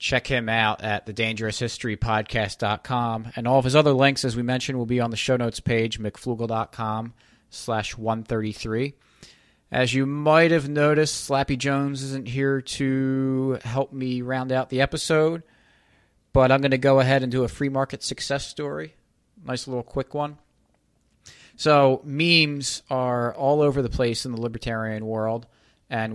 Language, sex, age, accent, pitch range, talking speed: English, male, 30-49, American, 105-130 Hz, 160 wpm